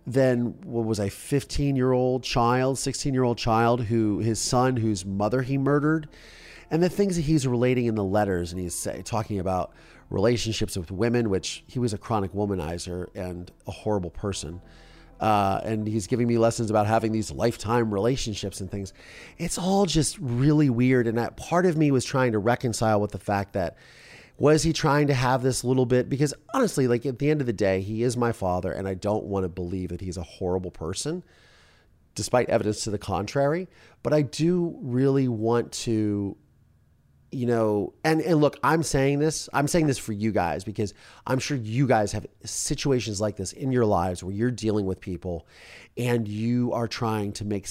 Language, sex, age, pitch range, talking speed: English, male, 30-49, 100-135 Hz, 195 wpm